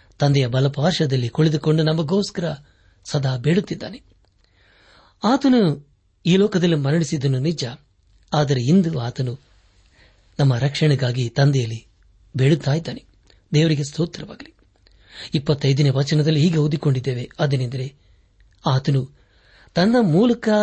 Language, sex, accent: Kannada, male, native